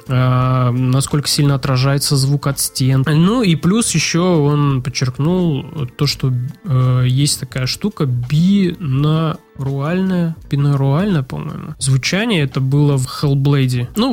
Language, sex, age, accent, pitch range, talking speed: Russian, male, 20-39, native, 135-160 Hz, 115 wpm